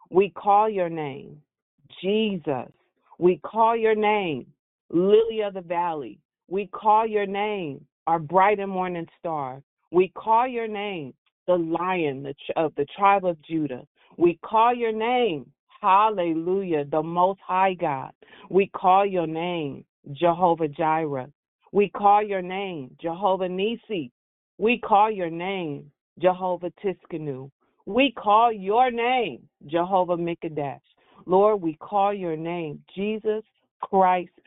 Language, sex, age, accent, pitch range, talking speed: English, female, 40-59, American, 150-195 Hz, 125 wpm